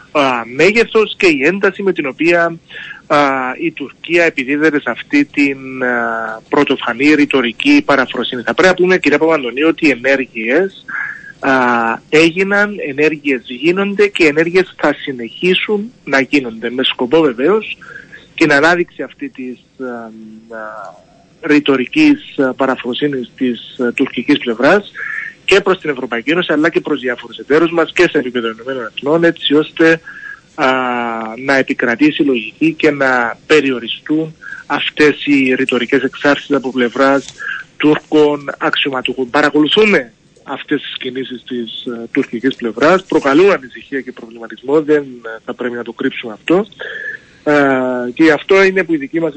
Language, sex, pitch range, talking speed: Greek, male, 130-170 Hz, 135 wpm